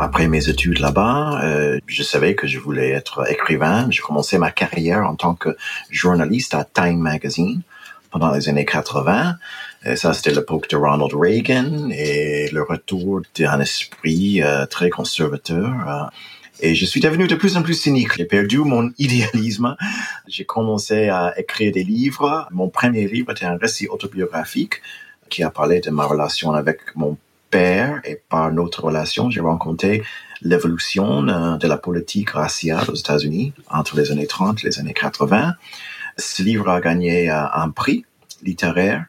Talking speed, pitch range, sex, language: 165 wpm, 75-100 Hz, male, French